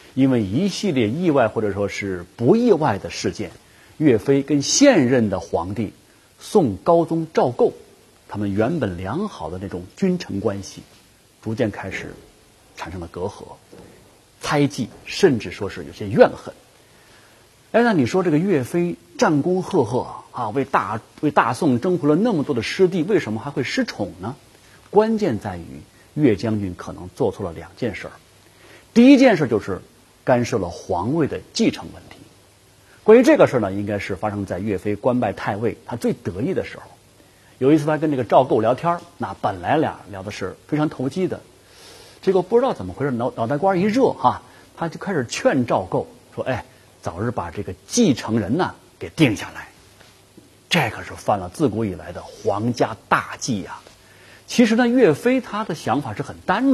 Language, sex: Chinese, male